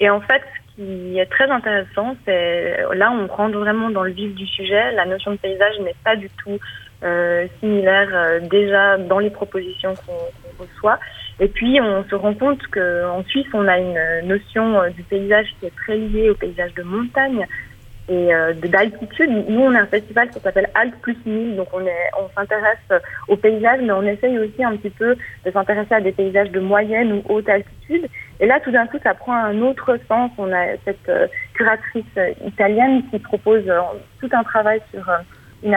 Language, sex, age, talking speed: French, female, 30-49, 200 wpm